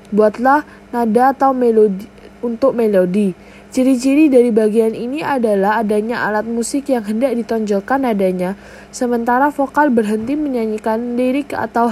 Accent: native